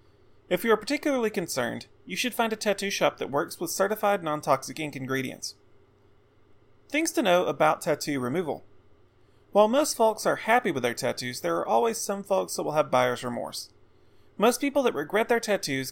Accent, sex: American, male